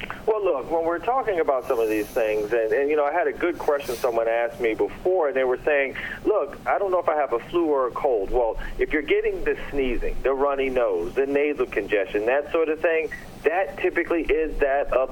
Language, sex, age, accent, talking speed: English, male, 40-59, American, 240 wpm